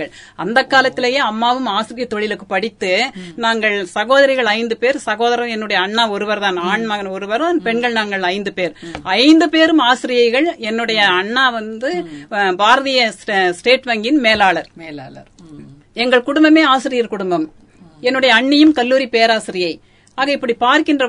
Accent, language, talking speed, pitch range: native, Tamil, 85 wpm, 210-275 Hz